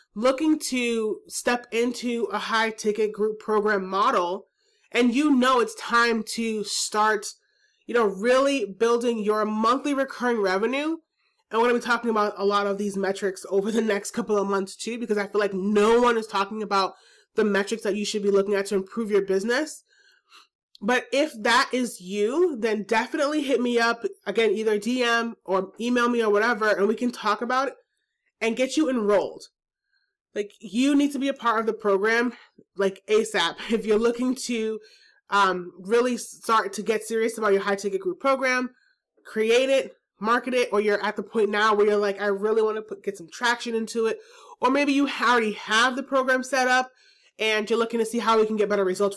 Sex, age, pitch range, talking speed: male, 30-49, 205-255 Hz, 200 wpm